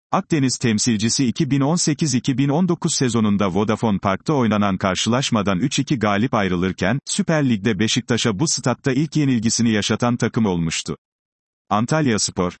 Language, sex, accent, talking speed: Turkish, male, native, 110 wpm